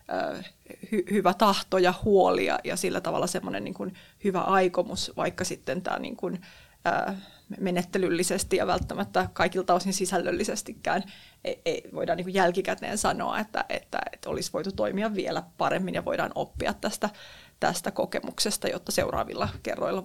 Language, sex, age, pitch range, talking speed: Finnish, female, 30-49, 180-210 Hz, 130 wpm